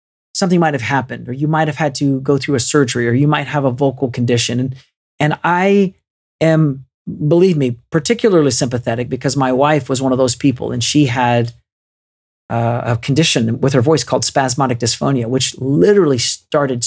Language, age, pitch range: English, 40-59, 120-155 Hz